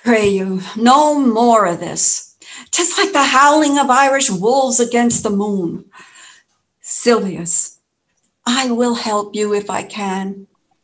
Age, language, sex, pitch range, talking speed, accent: 60-79, English, female, 170-230 Hz, 135 wpm, American